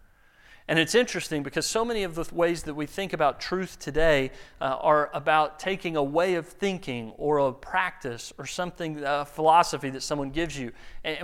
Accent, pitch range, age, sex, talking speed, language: American, 150-210 Hz, 40-59, male, 185 wpm, English